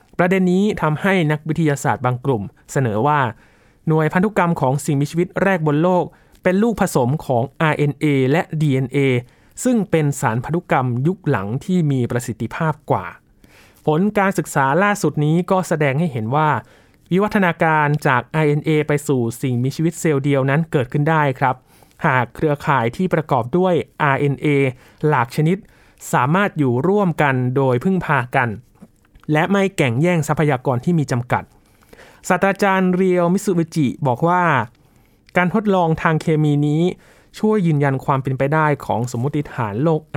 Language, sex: Thai, male